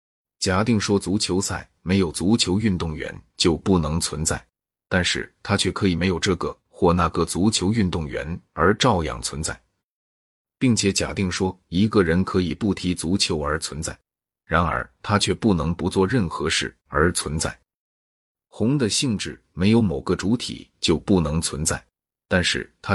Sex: male